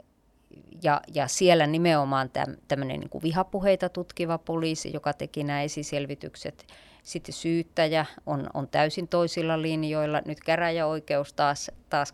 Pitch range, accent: 145-175 Hz, native